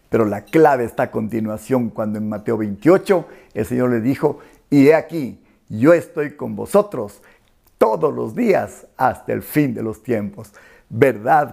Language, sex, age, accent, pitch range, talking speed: Spanish, male, 50-69, Mexican, 110-155 Hz, 160 wpm